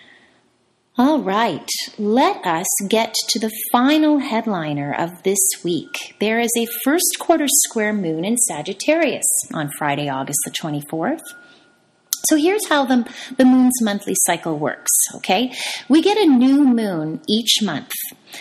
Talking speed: 135 wpm